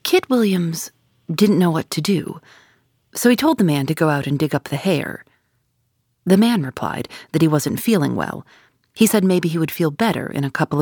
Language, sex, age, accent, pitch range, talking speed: English, female, 40-59, American, 130-205 Hz, 210 wpm